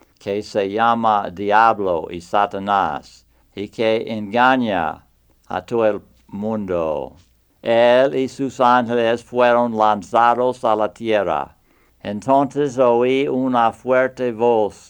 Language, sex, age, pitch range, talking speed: English, male, 60-79, 100-120 Hz, 110 wpm